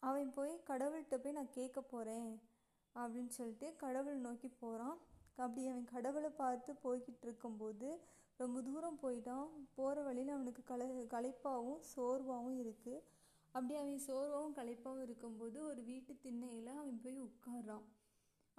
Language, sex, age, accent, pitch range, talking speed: Tamil, female, 20-39, native, 235-270 Hz, 120 wpm